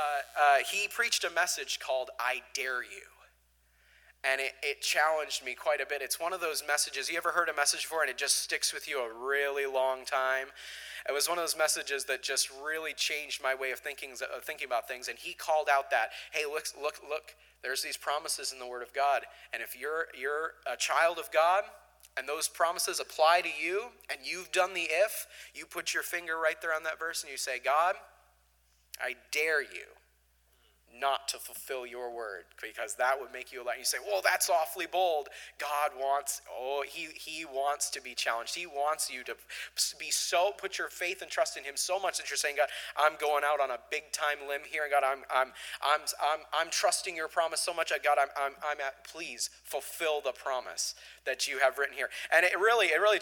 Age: 30-49